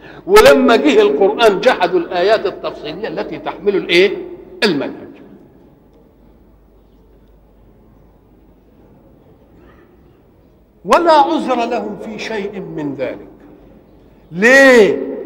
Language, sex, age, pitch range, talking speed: Arabic, male, 50-69, 195-305 Hz, 70 wpm